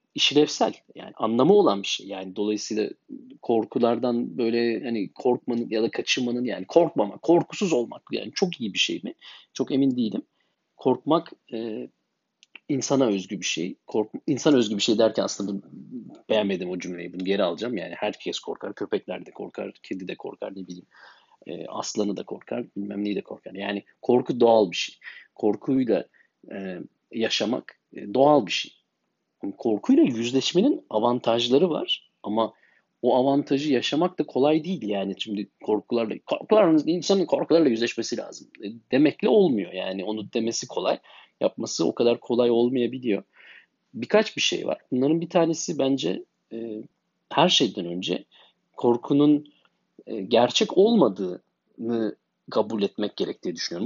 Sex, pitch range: male, 105-150 Hz